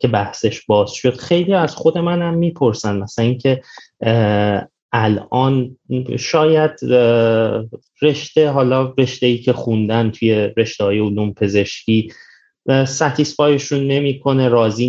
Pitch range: 110-135 Hz